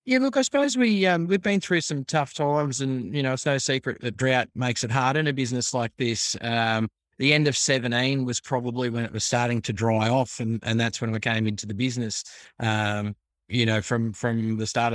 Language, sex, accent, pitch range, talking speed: English, male, Australian, 110-120 Hz, 235 wpm